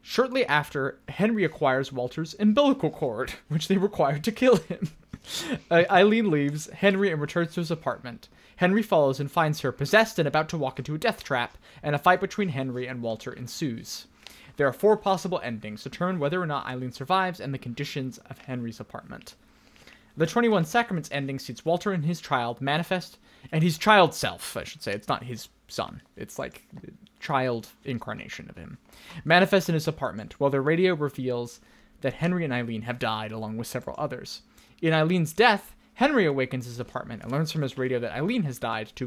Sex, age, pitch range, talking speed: male, 20-39, 130-185 Hz, 190 wpm